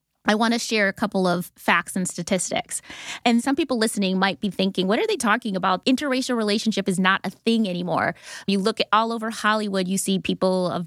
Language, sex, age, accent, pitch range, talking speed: English, female, 20-39, American, 190-235 Hz, 215 wpm